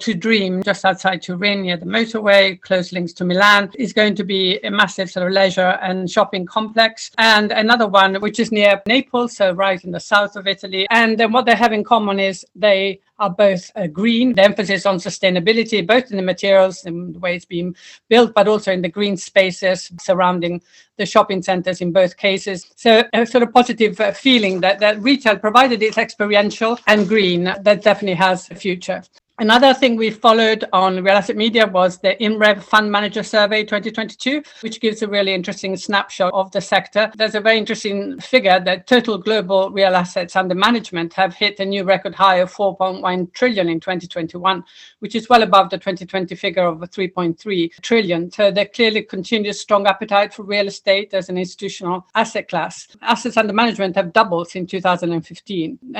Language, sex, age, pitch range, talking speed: English, female, 50-69, 190-220 Hz, 190 wpm